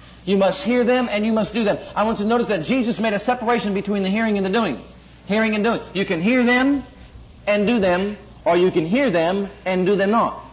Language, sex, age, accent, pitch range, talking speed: English, male, 50-69, American, 175-230 Hz, 250 wpm